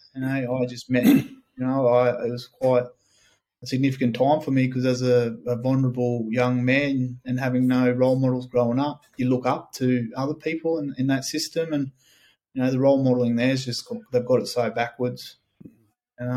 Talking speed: 205 wpm